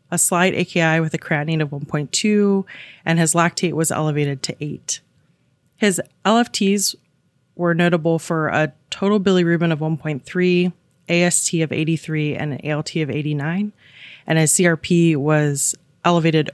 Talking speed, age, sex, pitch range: 140 wpm, 20-39, female, 150-185 Hz